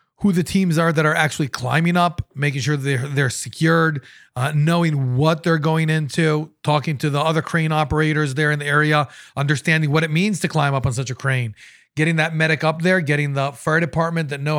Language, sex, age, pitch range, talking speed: English, male, 30-49, 135-160 Hz, 220 wpm